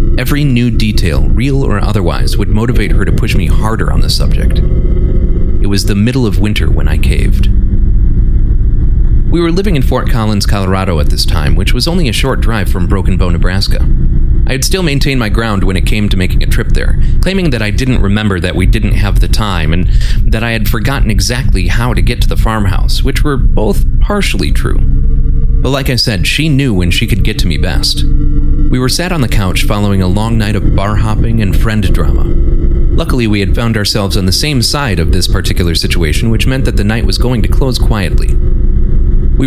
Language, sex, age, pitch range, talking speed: English, male, 30-49, 90-115 Hz, 215 wpm